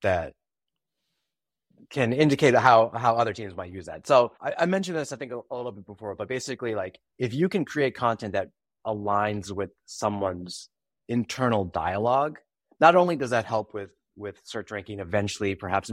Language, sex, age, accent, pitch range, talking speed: English, male, 30-49, American, 105-140 Hz, 175 wpm